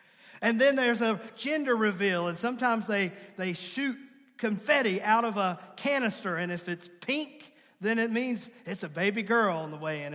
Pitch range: 195-245 Hz